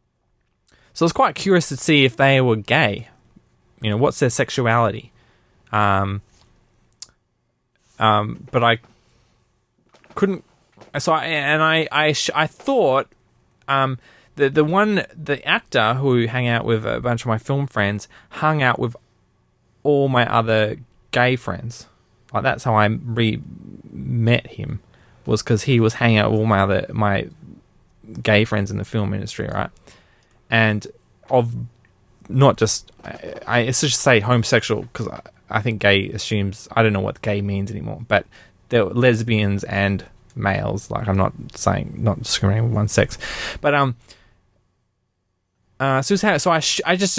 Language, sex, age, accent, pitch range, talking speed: English, male, 20-39, Australian, 105-135 Hz, 160 wpm